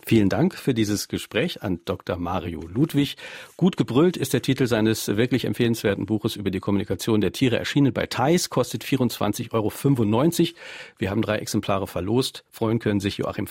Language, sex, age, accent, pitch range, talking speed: German, male, 50-69, German, 105-130 Hz, 170 wpm